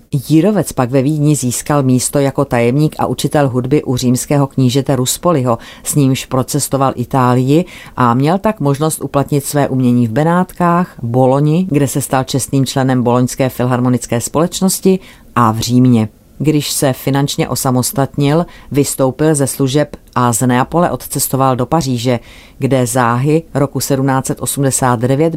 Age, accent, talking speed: 40-59, native, 135 wpm